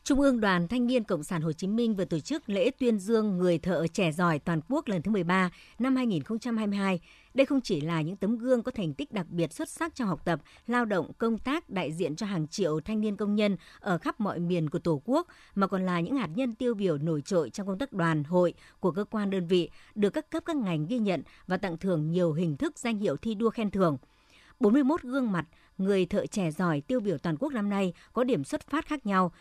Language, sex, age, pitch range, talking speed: Vietnamese, male, 60-79, 175-235 Hz, 255 wpm